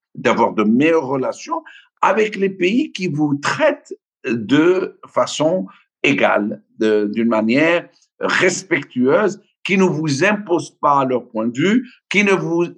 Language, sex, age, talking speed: French, male, 60-79, 135 wpm